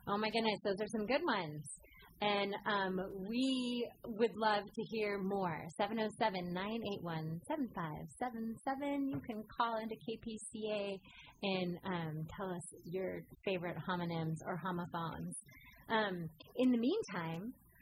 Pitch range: 180-235 Hz